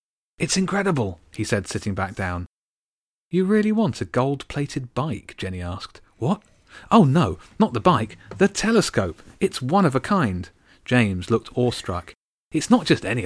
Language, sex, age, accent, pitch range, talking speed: English, male, 30-49, British, 100-140 Hz, 160 wpm